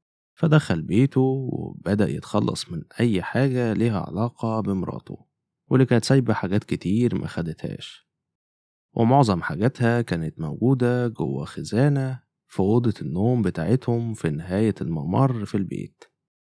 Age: 20-39